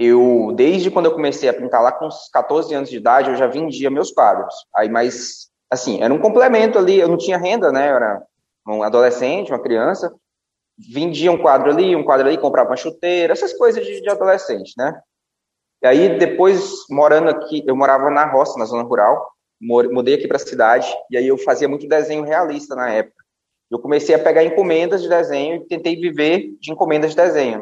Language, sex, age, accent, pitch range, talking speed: Portuguese, male, 20-39, Brazilian, 125-175 Hz, 200 wpm